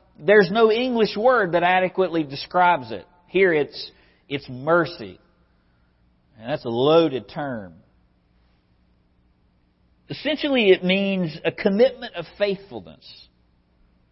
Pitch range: 125-185 Hz